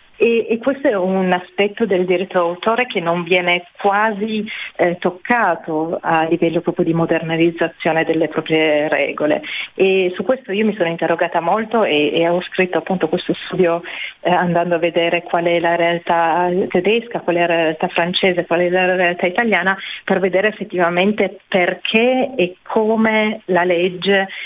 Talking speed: 160 wpm